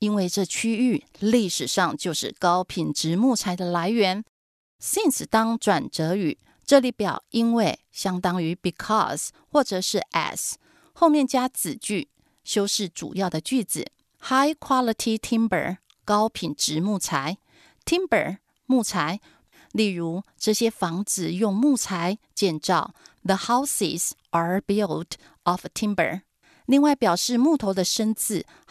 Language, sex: Chinese, female